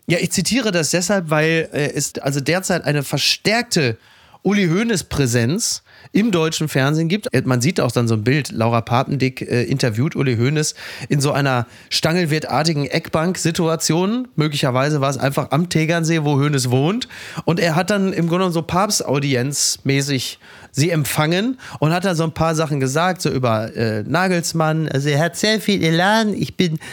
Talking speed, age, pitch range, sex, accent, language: 170 wpm, 30-49, 135-180 Hz, male, German, German